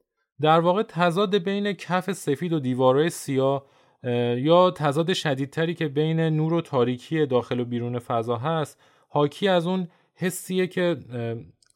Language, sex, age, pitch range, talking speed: Persian, male, 20-39, 125-165 Hz, 140 wpm